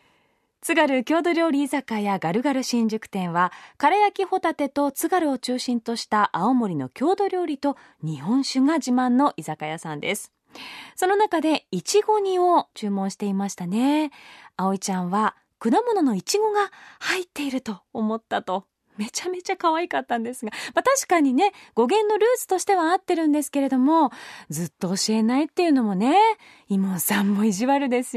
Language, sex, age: Japanese, female, 20-39